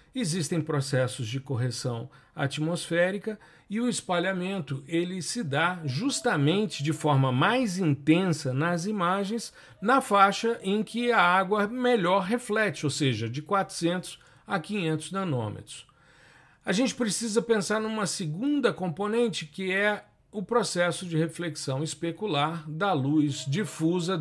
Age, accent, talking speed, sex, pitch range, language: 50-69, Brazilian, 120 wpm, male, 140-185 Hz, Portuguese